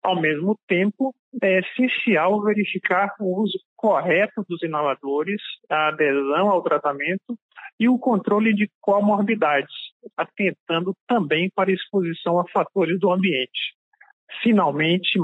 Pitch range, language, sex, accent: 170-215 Hz, Portuguese, male, Brazilian